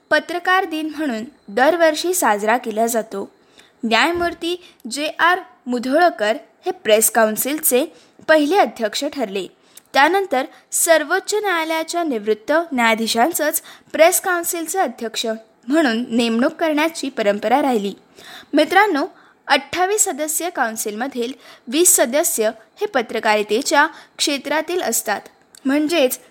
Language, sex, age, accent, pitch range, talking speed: Marathi, female, 20-39, native, 230-330 Hz, 95 wpm